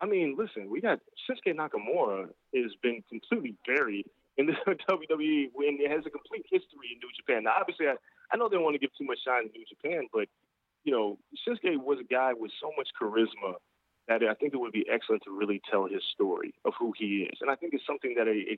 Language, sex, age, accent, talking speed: English, male, 30-49, American, 240 wpm